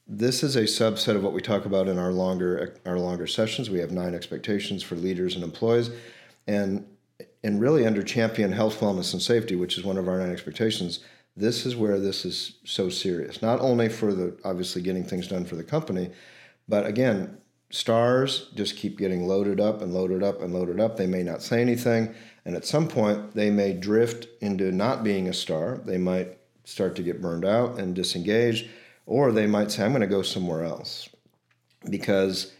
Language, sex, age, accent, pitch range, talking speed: English, male, 50-69, American, 90-110 Hz, 200 wpm